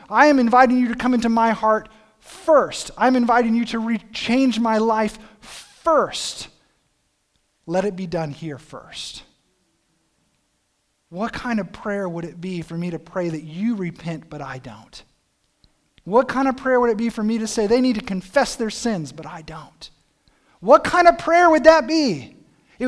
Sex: male